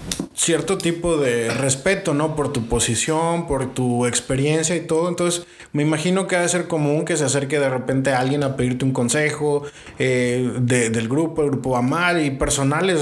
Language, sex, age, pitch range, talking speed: English, male, 20-39, 135-165 Hz, 190 wpm